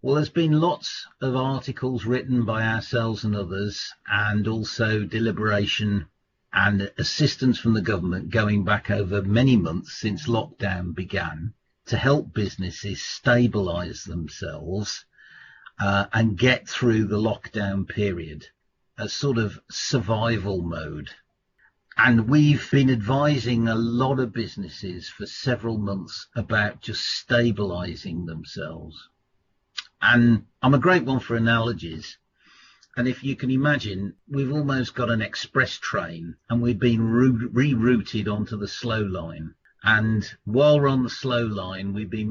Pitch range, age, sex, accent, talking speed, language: 100-130 Hz, 50-69, male, British, 135 wpm, English